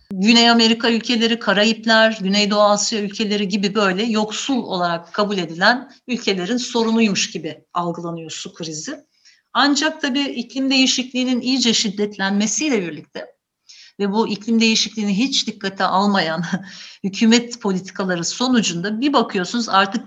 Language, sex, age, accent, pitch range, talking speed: Turkish, female, 60-79, native, 175-225 Hz, 115 wpm